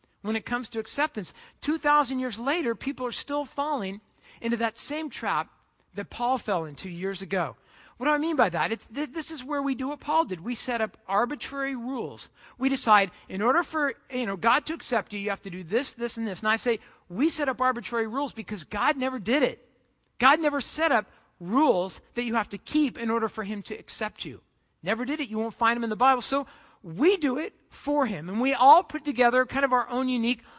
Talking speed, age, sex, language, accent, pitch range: 230 wpm, 50-69, male, English, American, 205-260 Hz